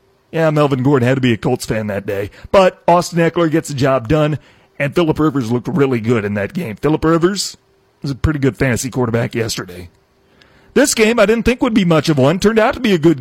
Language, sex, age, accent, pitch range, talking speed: English, male, 40-59, American, 135-185 Hz, 235 wpm